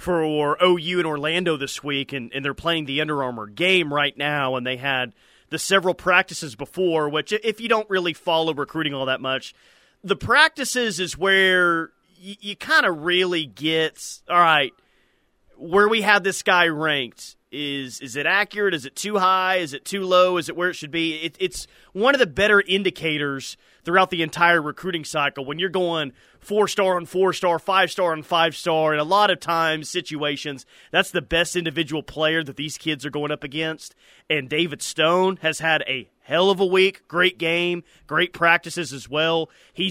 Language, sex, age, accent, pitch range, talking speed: English, male, 30-49, American, 155-190 Hz, 190 wpm